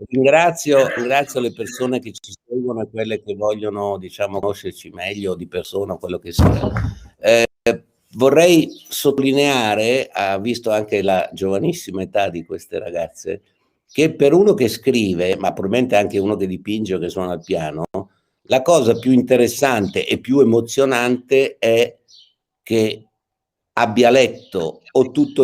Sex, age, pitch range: male, 60-79, 100-135 Hz